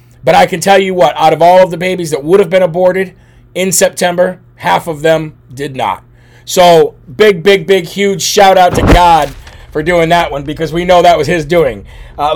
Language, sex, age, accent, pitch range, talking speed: English, male, 30-49, American, 155-185 Hz, 220 wpm